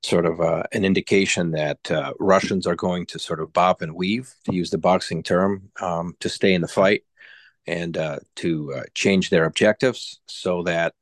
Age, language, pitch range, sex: 40-59, English, 85-95 Hz, male